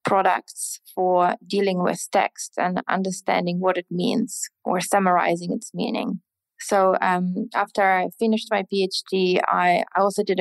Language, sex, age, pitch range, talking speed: English, female, 20-39, 180-210 Hz, 140 wpm